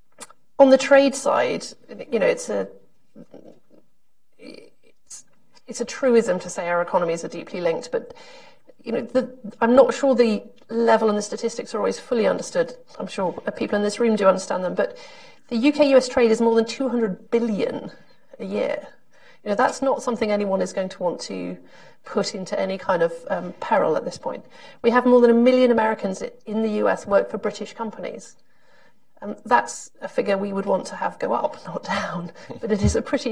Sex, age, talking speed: female, 40-59, 195 wpm